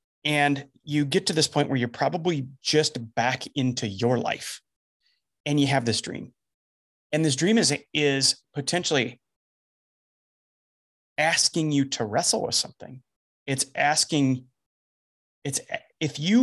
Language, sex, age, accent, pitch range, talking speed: English, male, 30-49, American, 125-170 Hz, 130 wpm